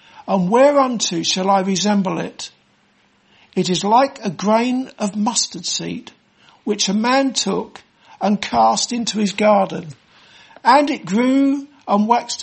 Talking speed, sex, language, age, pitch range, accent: 135 wpm, male, English, 60-79, 200-250 Hz, British